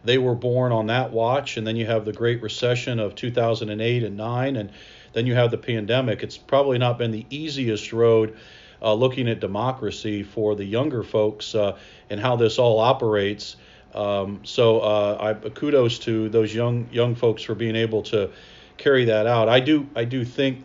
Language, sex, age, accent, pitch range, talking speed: English, male, 40-59, American, 105-125 Hz, 190 wpm